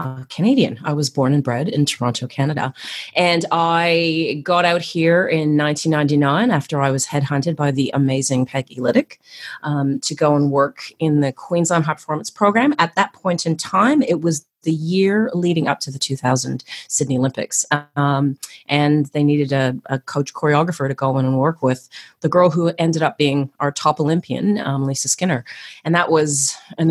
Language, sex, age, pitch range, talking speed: English, female, 30-49, 140-170 Hz, 185 wpm